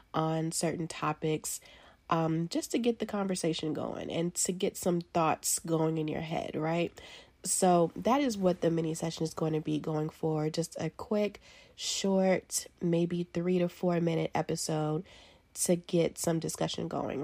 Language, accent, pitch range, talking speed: English, American, 165-195 Hz, 165 wpm